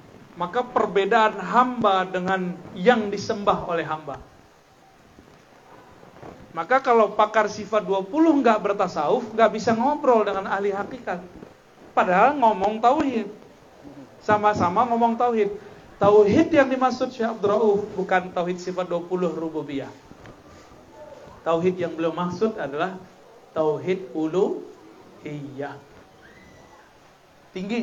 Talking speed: 95 wpm